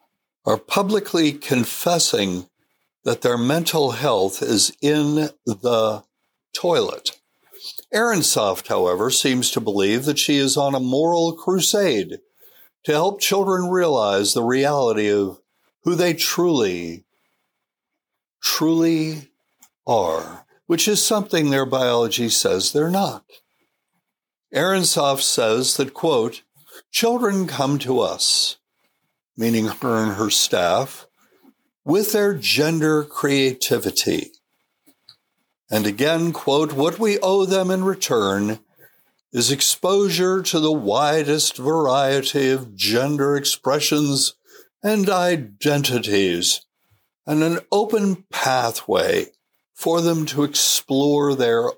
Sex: male